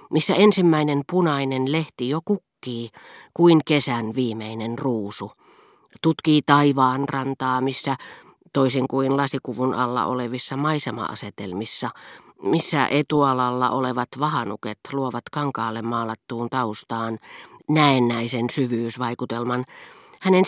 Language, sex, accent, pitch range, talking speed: Finnish, female, native, 120-150 Hz, 90 wpm